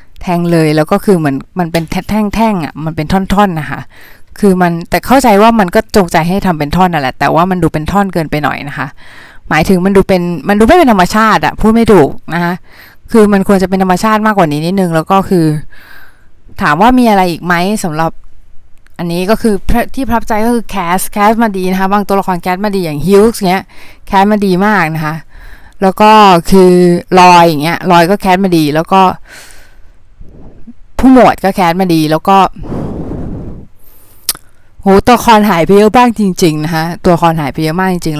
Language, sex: Thai, female